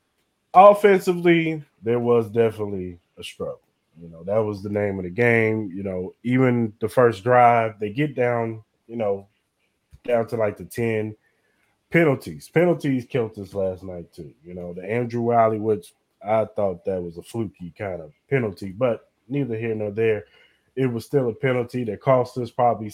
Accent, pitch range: American, 100-125 Hz